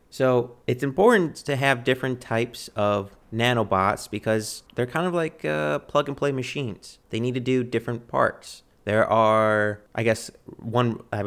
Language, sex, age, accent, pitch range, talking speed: English, male, 30-49, American, 100-125 Hz, 155 wpm